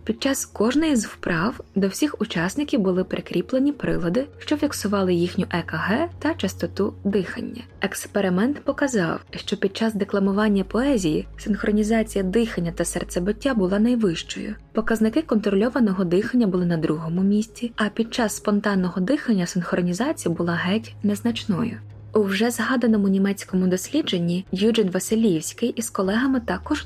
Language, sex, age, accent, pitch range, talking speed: Ukrainian, female, 20-39, native, 185-235 Hz, 125 wpm